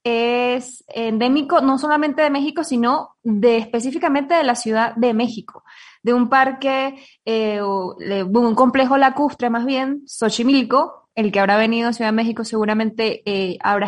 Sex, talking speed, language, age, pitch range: female, 150 wpm, Spanish, 20-39, 215-265 Hz